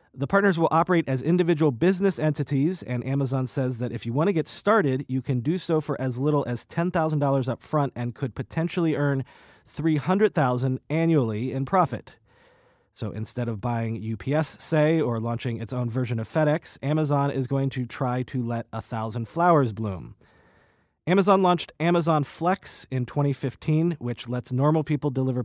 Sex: male